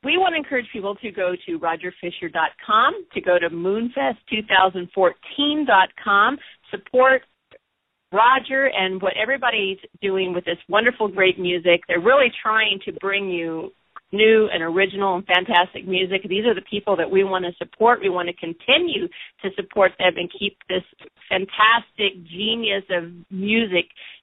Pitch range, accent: 180-220 Hz, American